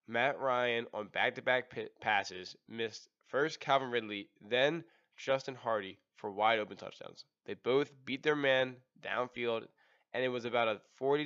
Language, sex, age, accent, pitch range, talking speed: English, male, 10-29, American, 110-135 Hz, 150 wpm